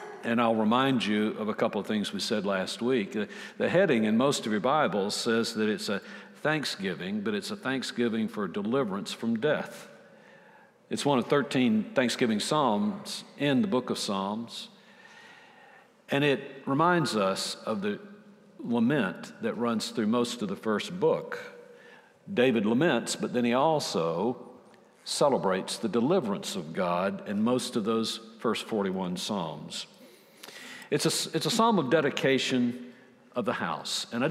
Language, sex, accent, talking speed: English, male, American, 155 wpm